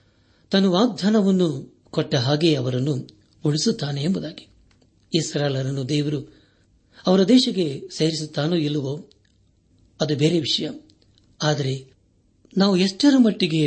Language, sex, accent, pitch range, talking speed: Kannada, male, native, 130-170 Hz, 90 wpm